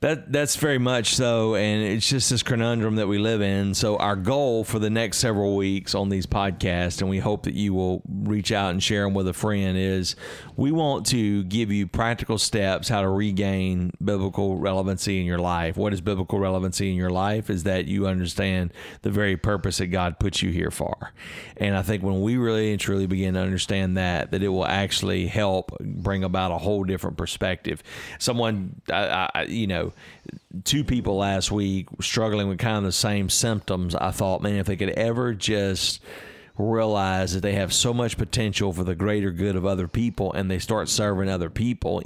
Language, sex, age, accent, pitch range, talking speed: English, male, 40-59, American, 95-110 Hz, 205 wpm